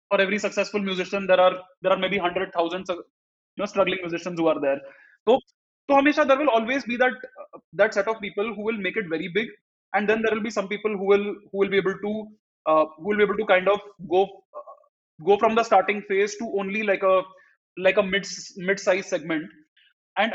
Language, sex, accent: Hindi, male, native